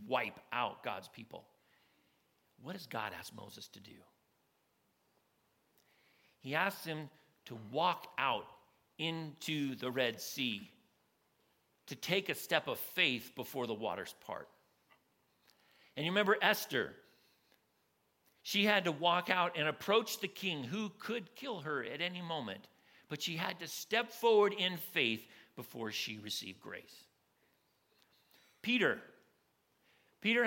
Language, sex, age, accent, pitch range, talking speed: English, male, 50-69, American, 130-195 Hz, 130 wpm